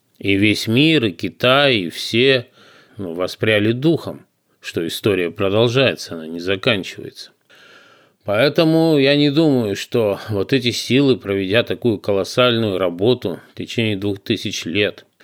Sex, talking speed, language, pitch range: male, 130 wpm, Russian, 105-125 Hz